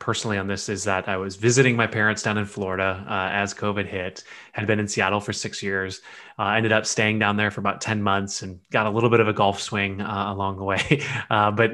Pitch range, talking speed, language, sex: 100-120 Hz, 255 wpm, English, male